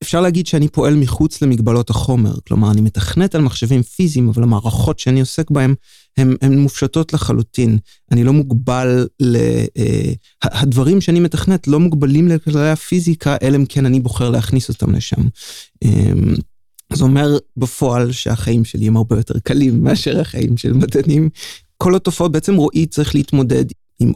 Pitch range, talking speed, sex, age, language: 120-150 Hz, 145 wpm, male, 30-49, Hebrew